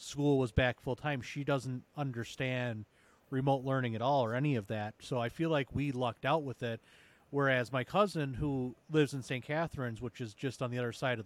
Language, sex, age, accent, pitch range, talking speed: English, male, 30-49, American, 125-165 Hz, 220 wpm